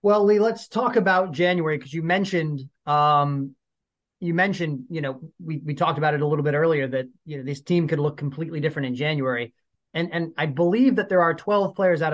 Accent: American